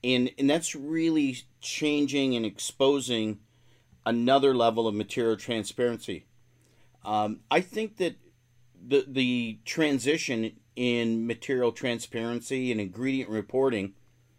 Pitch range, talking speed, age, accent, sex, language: 120-135 Hz, 105 wpm, 40-59, American, male, English